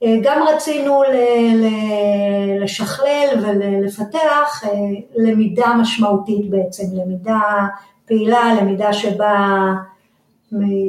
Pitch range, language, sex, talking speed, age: 200-260 Hz, Hebrew, female, 65 wpm, 50-69